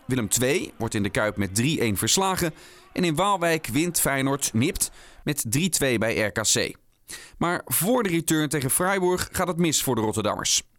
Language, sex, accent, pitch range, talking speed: Dutch, male, Dutch, 125-165 Hz, 170 wpm